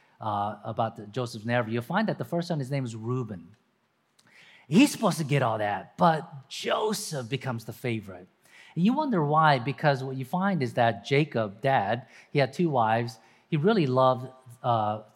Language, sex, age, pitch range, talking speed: English, male, 40-59, 120-165 Hz, 180 wpm